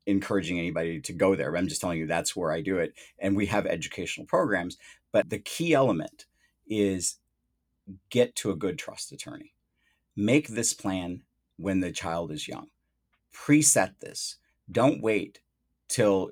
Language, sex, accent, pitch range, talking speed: English, male, American, 90-120 Hz, 160 wpm